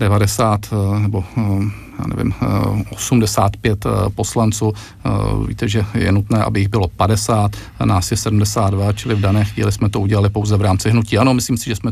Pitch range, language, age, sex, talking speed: 110-125 Hz, Czech, 40-59, male, 165 wpm